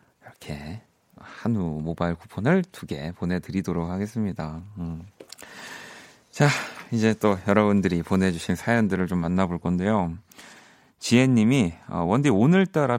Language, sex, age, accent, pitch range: Korean, male, 30-49, native, 90-115 Hz